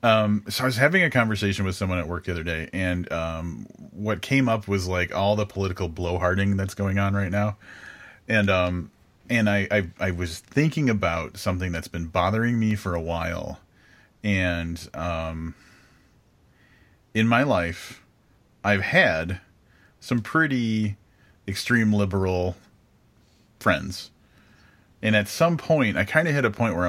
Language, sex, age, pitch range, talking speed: English, male, 30-49, 90-110 Hz, 155 wpm